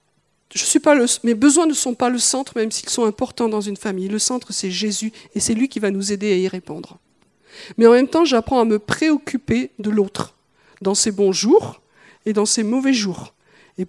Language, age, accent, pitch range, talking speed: French, 50-69, French, 205-270 Hz, 225 wpm